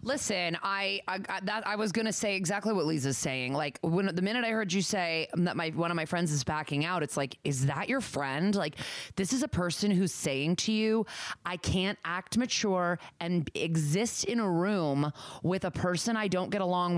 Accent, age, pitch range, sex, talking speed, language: American, 20-39, 165-205 Hz, female, 210 wpm, English